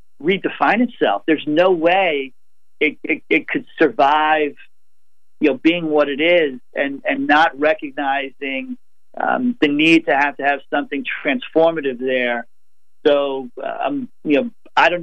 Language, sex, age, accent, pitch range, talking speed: English, male, 50-69, American, 135-165 Hz, 145 wpm